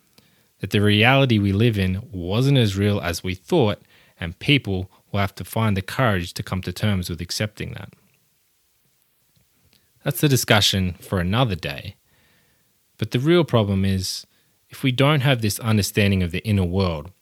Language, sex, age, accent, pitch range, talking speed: English, male, 20-39, Australian, 90-110 Hz, 165 wpm